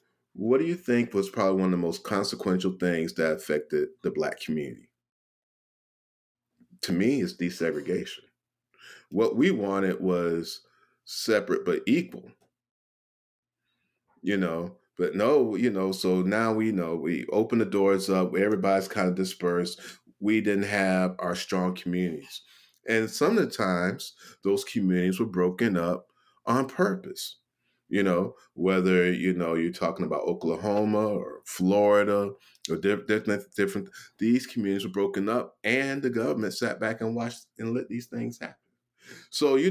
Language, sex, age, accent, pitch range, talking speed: English, male, 30-49, American, 90-115 Hz, 150 wpm